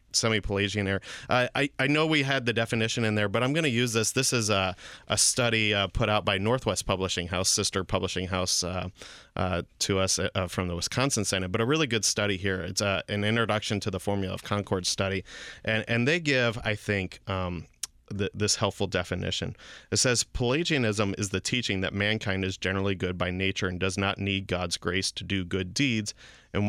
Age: 30-49